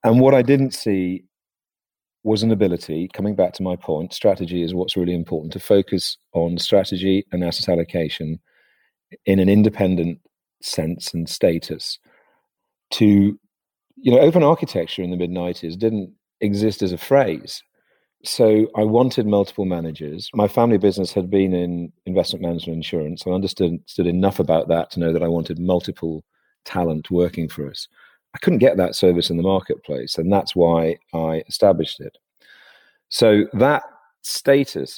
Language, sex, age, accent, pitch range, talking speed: English, male, 40-59, British, 85-100 Hz, 155 wpm